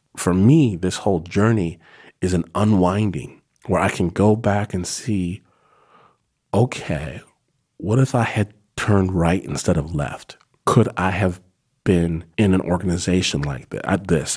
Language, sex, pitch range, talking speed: English, male, 85-105 Hz, 150 wpm